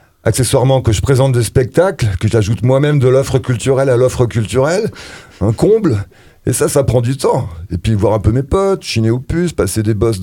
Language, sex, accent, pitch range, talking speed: French, male, French, 95-125 Hz, 210 wpm